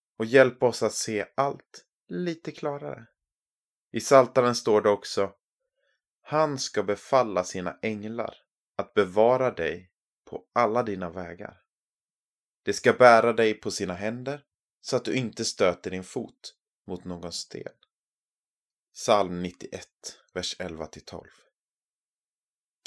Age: 20-39